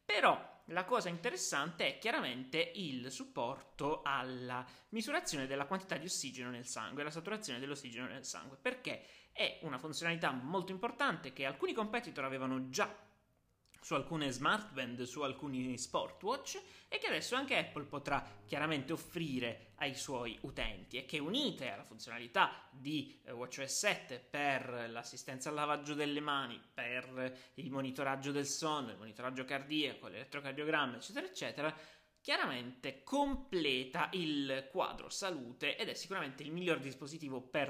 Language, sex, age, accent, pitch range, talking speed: Italian, male, 20-39, native, 125-150 Hz, 135 wpm